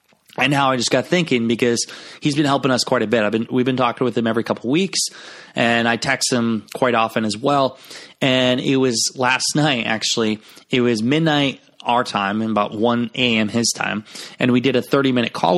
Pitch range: 115-135 Hz